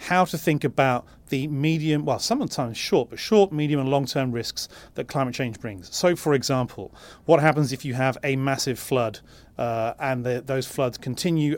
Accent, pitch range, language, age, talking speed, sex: British, 125-155 Hz, English, 30-49, 185 wpm, male